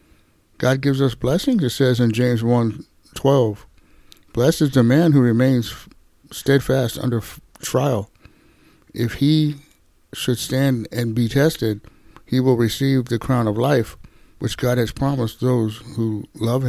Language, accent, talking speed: English, American, 145 wpm